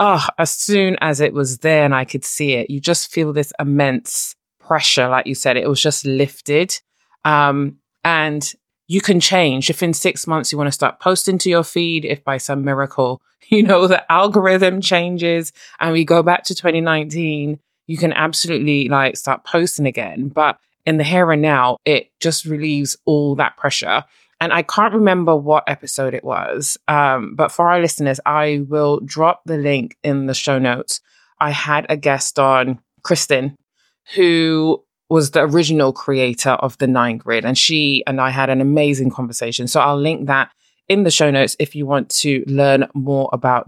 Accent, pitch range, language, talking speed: British, 135-170 Hz, English, 185 wpm